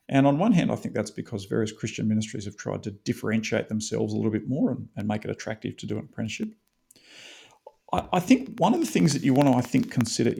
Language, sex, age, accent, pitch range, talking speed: English, male, 40-59, Australian, 110-125 Hz, 250 wpm